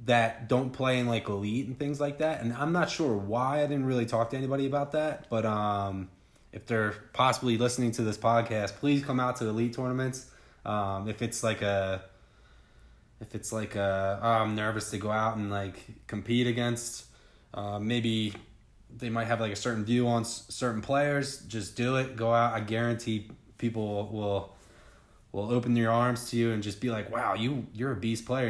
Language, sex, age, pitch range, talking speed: English, male, 20-39, 105-125 Hz, 200 wpm